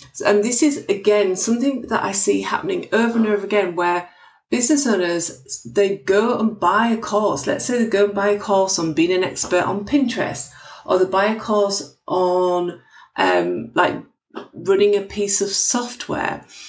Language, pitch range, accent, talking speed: English, 180-240 Hz, British, 175 wpm